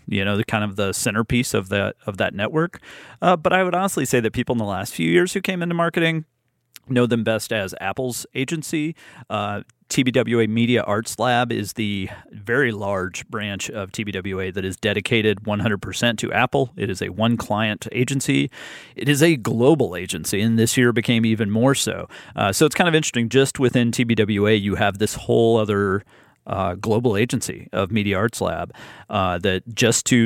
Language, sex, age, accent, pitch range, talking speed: English, male, 40-59, American, 105-125 Hz, 190 wpm